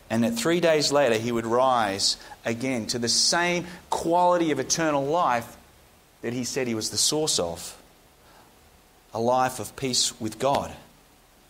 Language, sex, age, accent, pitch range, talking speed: English, male, 30-49, Australian, 130-175 Hz, 155 wpm